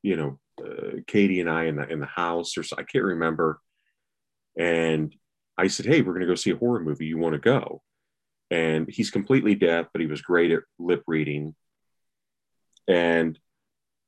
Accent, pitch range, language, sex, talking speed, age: American, 75-95 Hz, English, male, 190 wpm, 40-59